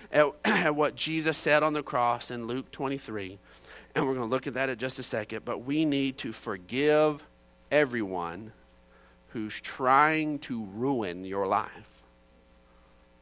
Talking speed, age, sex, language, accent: 150 wpm, 40-59, male, English, American